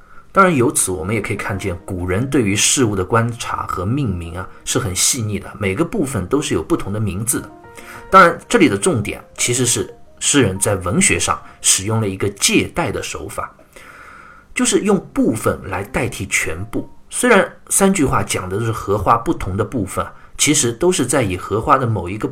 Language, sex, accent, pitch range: Chinese, male, native, 95-130 Hz